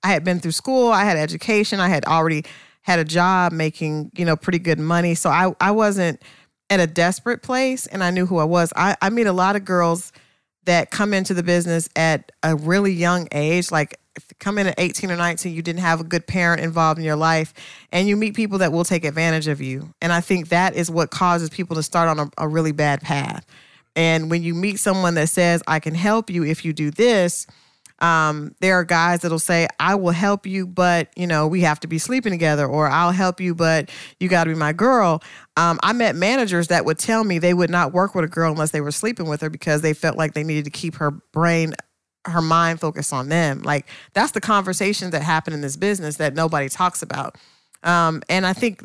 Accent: American